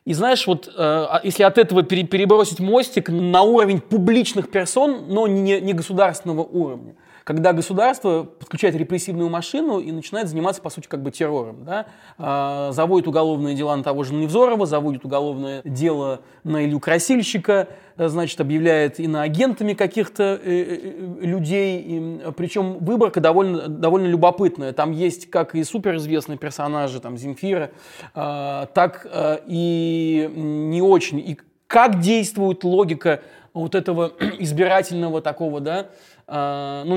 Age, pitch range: 20-39, 155-190 Hz